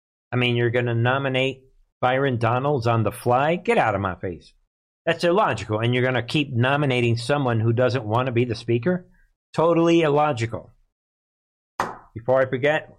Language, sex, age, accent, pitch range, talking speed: English, male, 50-69, American, 115-140 Hz, 170 wpm